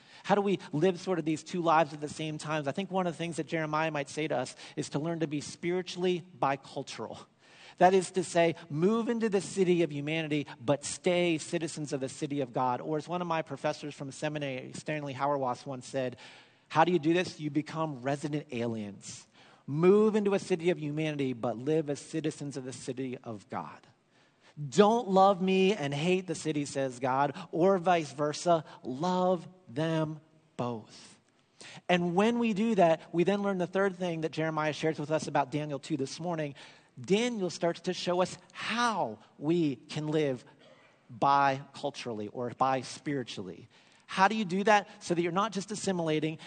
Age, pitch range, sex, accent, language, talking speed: 40-59, 145-190 Hz, male, American, English, 190 wpm